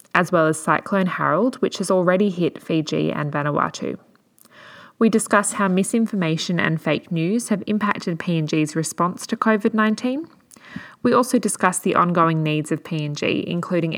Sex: female